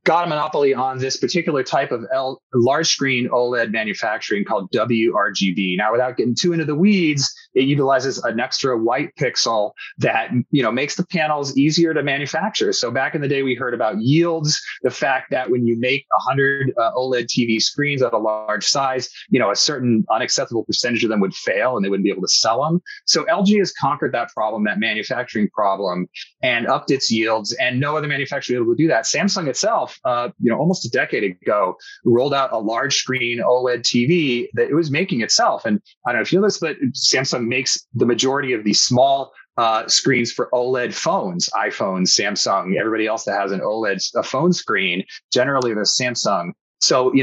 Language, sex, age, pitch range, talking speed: English, male, 30-49, 120-150 Hz, 200 wpm